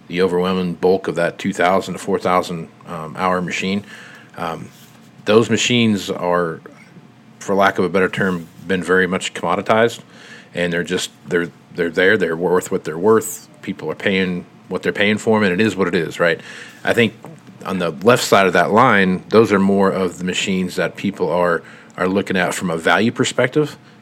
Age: 40-59